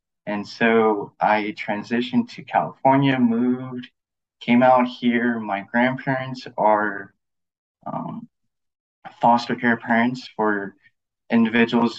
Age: 20-39